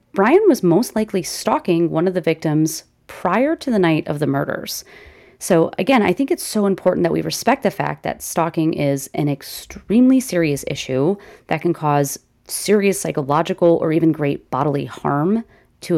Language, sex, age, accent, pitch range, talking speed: English, female, 30-49, American, 155-200 Hz, 175 wpm